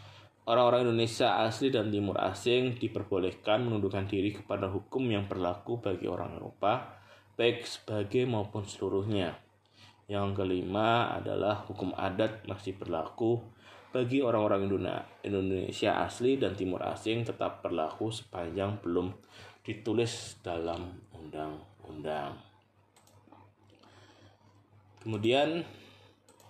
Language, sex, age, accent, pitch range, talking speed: Indonesian, male, 20-39, native, 100-115 Hz, 95 wpm